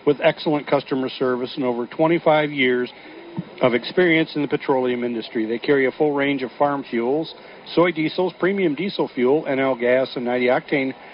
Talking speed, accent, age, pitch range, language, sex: 165 wpm, American, 50-69, 125-155 Hz, English, male